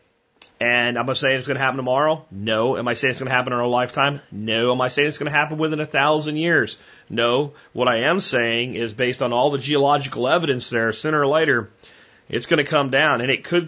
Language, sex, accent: English, male, American